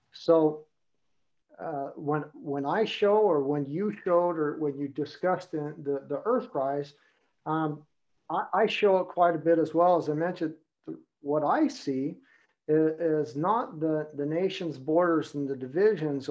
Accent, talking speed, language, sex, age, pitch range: American, 165 wpm, English, male, 50-69, 145-180 Hz